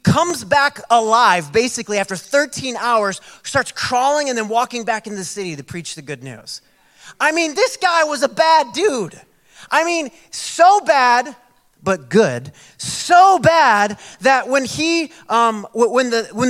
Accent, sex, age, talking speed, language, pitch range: American, male, 30-49, 160 wpm, English, 165-245 Hz